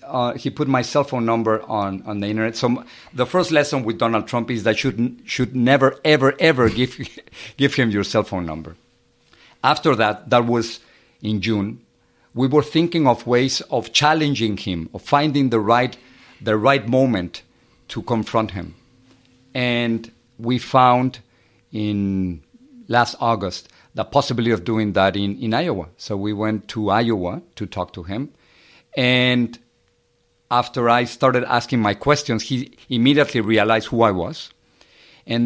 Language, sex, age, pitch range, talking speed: English, male, 50-69, 110-135 Hz, 160 wpm